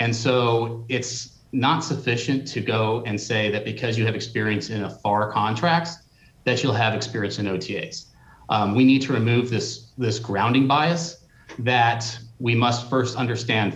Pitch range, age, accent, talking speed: 105-130 Hz, 30-49, American, 165 wpm